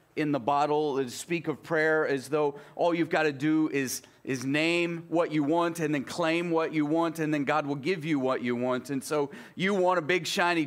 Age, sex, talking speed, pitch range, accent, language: 40-59, male, 235 wpm, 145-185 Hz, American, English